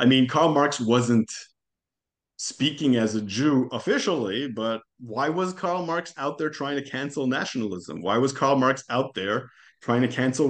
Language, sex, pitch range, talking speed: English, male, 110-140 Hz, 170 wpm